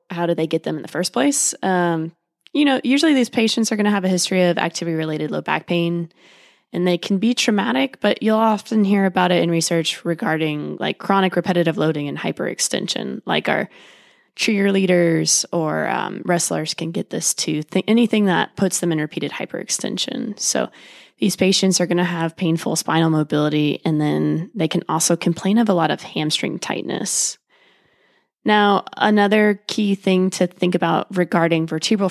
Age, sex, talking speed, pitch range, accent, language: 20-39, female, 175 wpm, 165-200 Hz, American, English